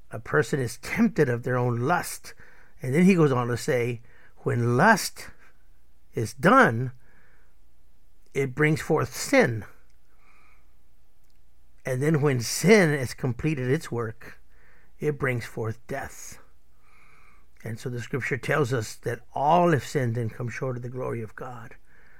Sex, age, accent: male, 60-79, American